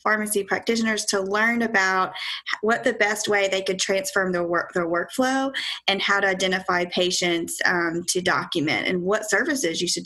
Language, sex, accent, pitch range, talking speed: English, female, American, 185-225 Hz, 175 wpm